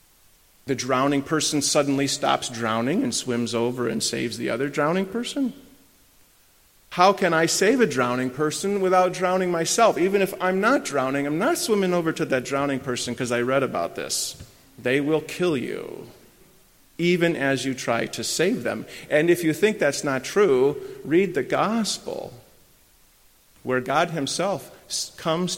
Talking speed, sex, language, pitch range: 160 wpm, male, English, 135-185 Hz